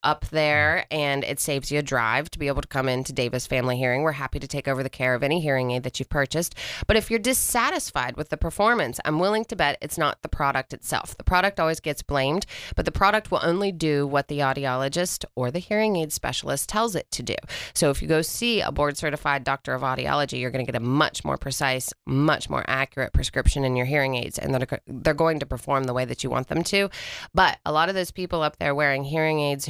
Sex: female